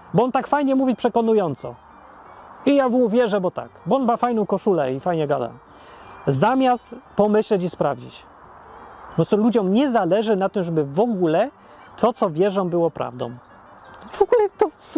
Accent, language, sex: native, Polish, male